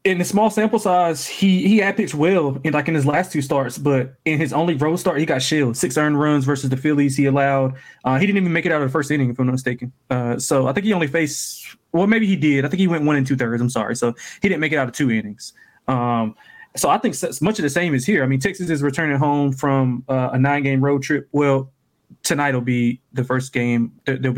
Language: English